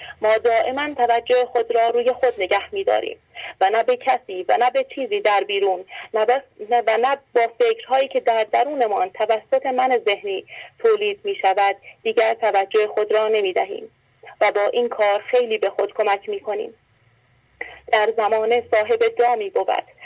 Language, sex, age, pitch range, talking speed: English, female, 30-49, 220-260 Hz, 165 wpm